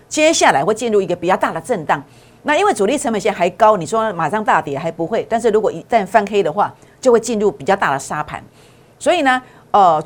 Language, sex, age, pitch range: Chinese, female, 50-69, 180-255 Hz